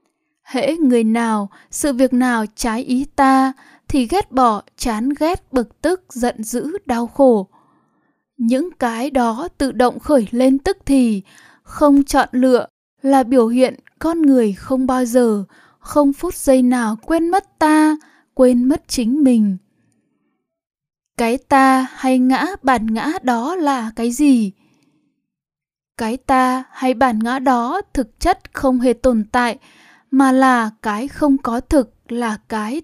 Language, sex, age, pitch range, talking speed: Vietnamese, female, 10-29, 235-280 Hz, 150 wpm